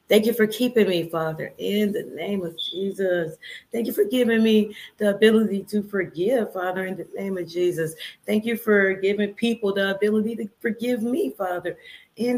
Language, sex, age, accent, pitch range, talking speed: English, female, 30-49, American, 165-210 Hz, 185 wpm